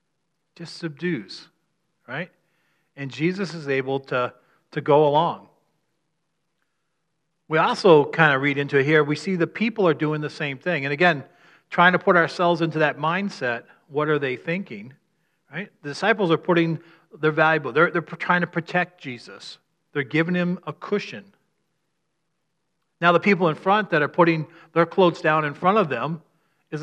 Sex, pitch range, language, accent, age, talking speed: male, 140-170 Hz, English, American, 40-59, 170 wpm